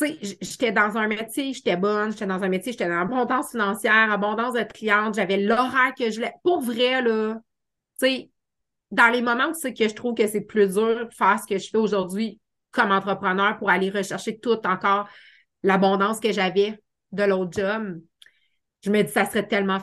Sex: female